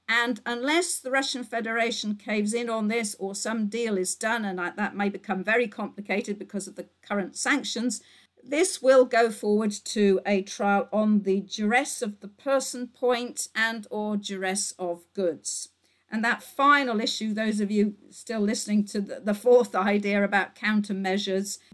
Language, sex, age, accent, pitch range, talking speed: English, female, 50-69, British, 195-245 Hz, 165 wpm